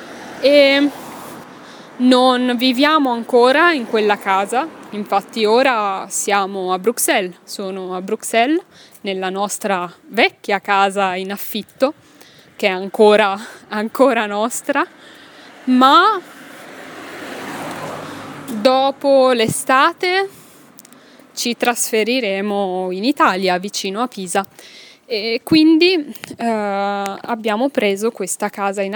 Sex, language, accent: female, Italian, native